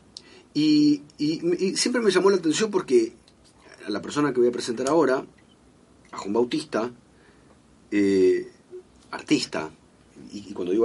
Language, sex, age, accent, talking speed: Spanish, male, 40-59, Argentinian, 145 wpm